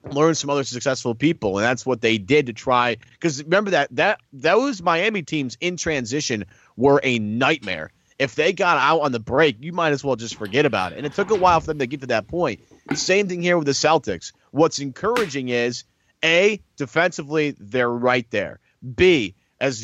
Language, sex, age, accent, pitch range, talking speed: English, male, 30-49, American, 115-145 Hz, 205 wpm